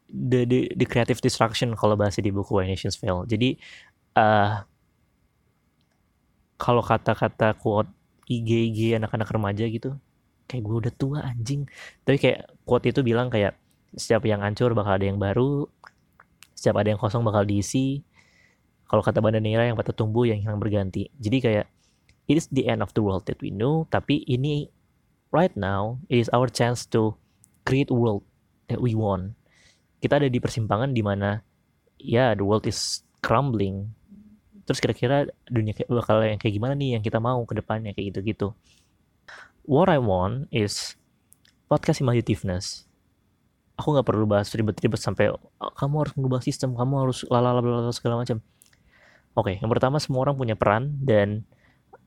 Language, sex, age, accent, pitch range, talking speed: Indonesian, male, 20-39, native, 105-125 Hz, 160 wpm